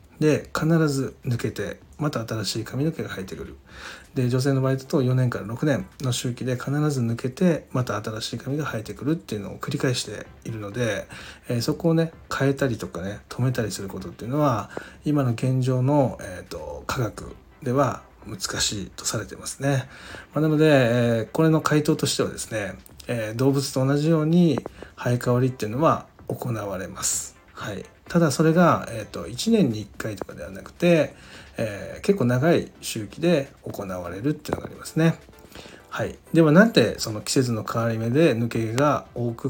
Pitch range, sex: 110-150 Hz, male